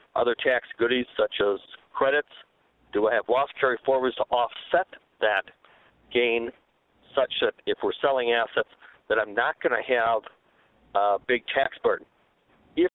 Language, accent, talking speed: English, American, 155 wpm